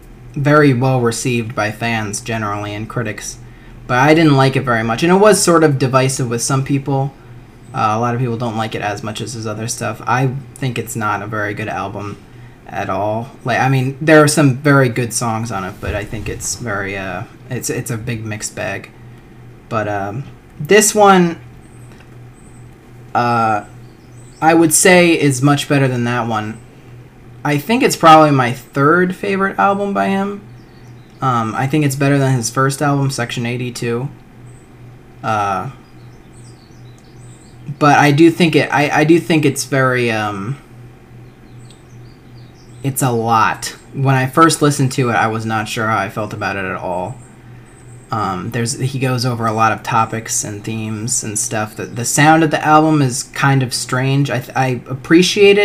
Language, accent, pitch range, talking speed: English, American, 115-135 Hz, 180 wpm